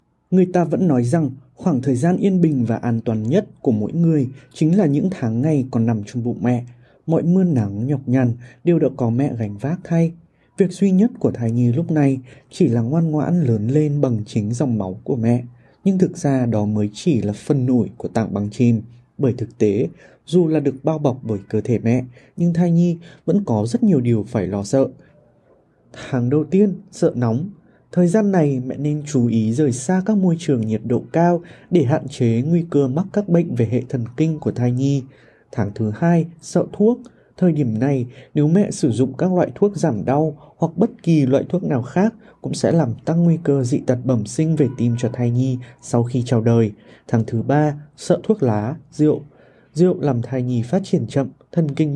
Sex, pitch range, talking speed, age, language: male, 120-170 Hz, 220 wpm, 20-39, Vietnamese